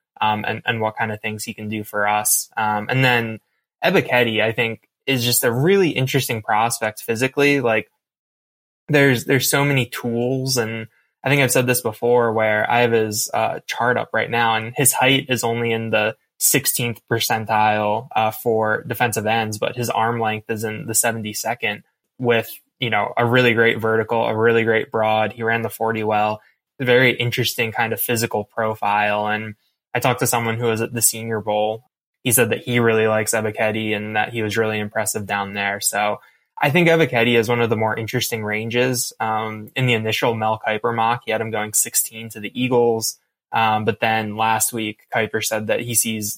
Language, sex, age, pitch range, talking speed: English, male, 10-29, 110-120 Hz, 200 wpm